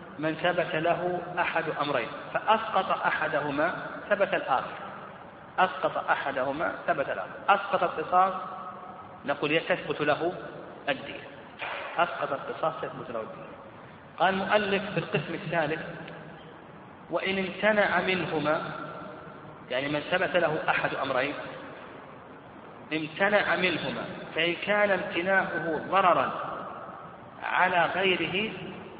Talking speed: 95 wpm